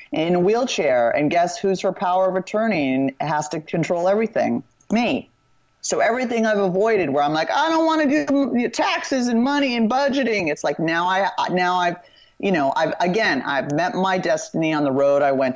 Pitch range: 160-225 Hz